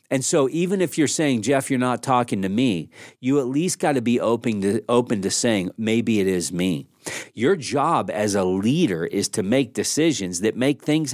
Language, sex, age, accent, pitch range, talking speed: English, male, 40-59, American, 120-180 Hz, 210 wpm